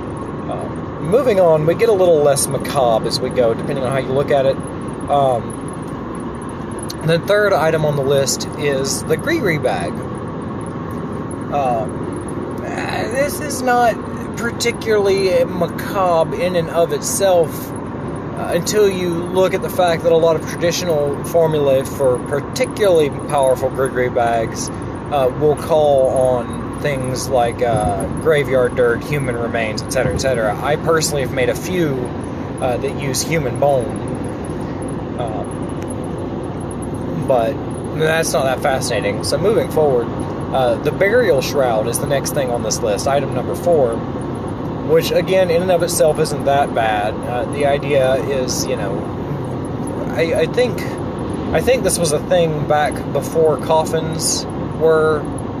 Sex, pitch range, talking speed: male, 130-165 Hz, 145 wpm